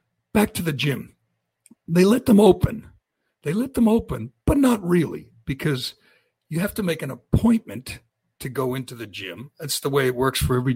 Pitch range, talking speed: 125-170 Hz, 190 wpm